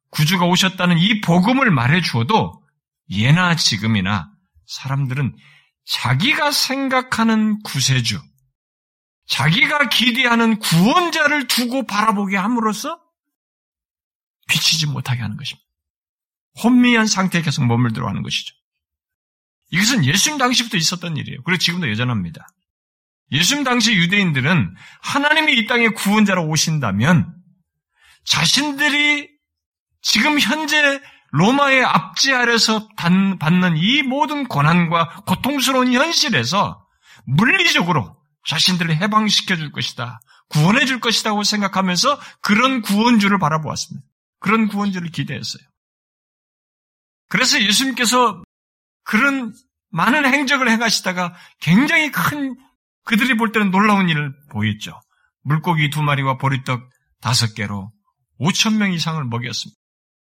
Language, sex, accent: Korean, male, native